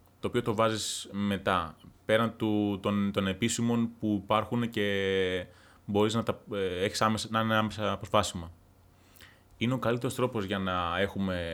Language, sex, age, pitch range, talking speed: Greek, male, 30-49, 95-120 Hz, 130 wpm